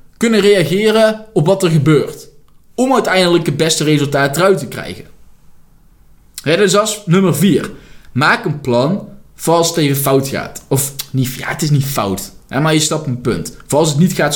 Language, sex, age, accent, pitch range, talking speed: Dutch, male, 20-39, Dutch, 140-210 Hz, 190 wpm